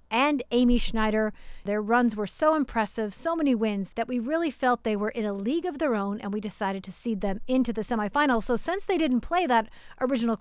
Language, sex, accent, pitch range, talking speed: English, female, American, 210-280 Hz, 225 wpm